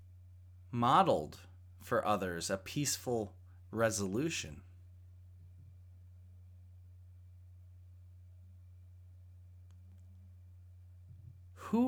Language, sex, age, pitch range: English, male, 30-49, 90-115 Hz